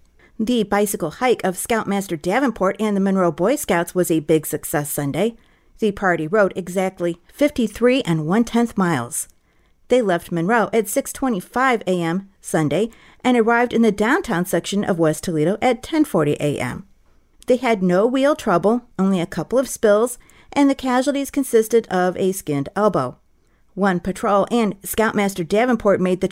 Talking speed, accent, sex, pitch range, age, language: 155 wpm, American, female, 180-240 Hz, 50-69, English